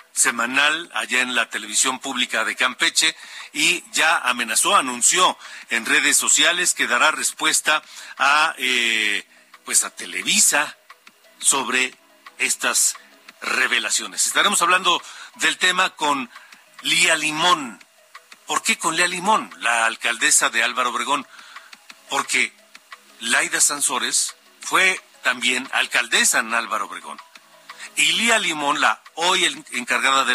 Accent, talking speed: Mexican, 115 wpm